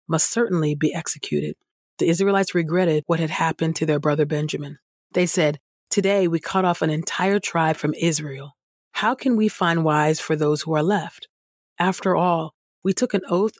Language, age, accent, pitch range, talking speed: English, 30-49, American, 155-190 Hz, 180 wpm